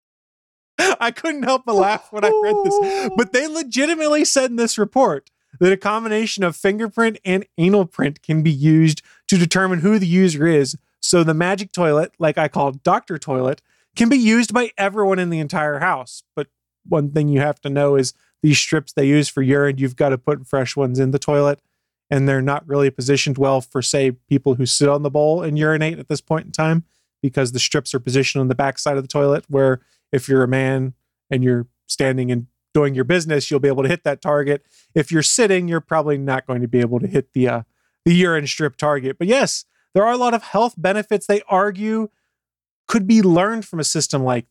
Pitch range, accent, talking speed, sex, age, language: 140-195 Hz, American, 220 wpm, male, 30-49, English